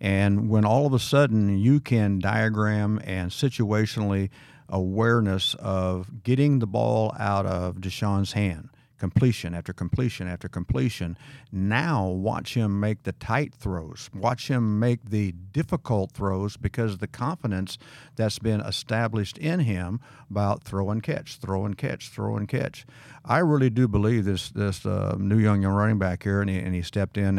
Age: 50-69